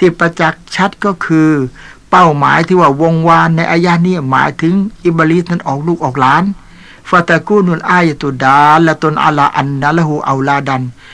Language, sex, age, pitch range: Thai, male, 60-79, 145-175 Hz